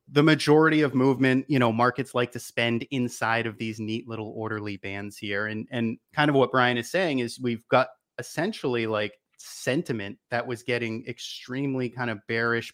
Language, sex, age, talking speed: English, male, 30-49, 185 wpm